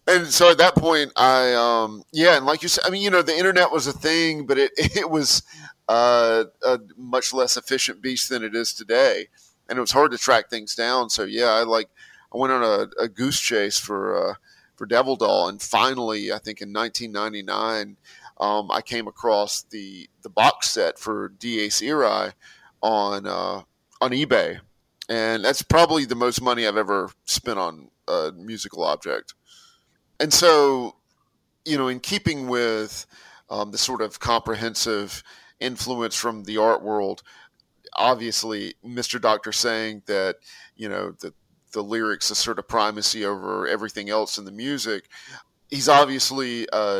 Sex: male